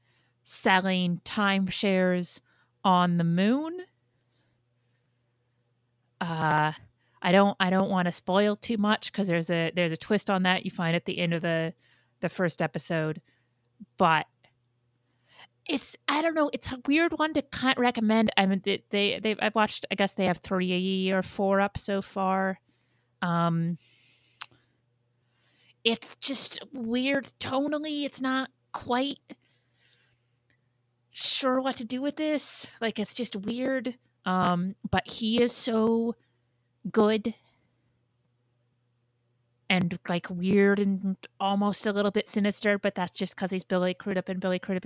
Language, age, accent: English, 30-49, American